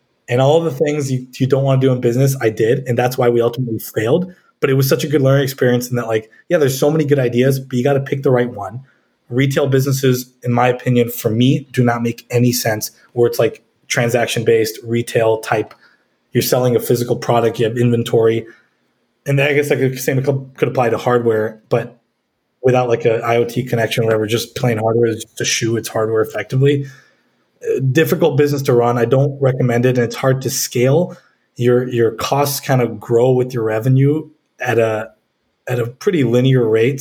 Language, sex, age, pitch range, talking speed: English, male, 20-39, 120-135 Hz, 210 wpm